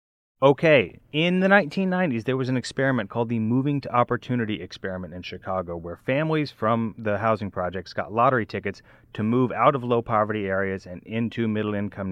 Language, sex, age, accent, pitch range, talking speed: English, male, 30-49, American, 95-125 Hz, 170 wpm